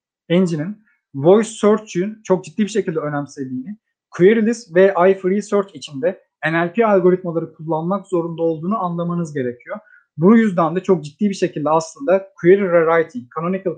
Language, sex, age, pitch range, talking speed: Turkish, male, 30-49, 155-190 Hz, 145 wpm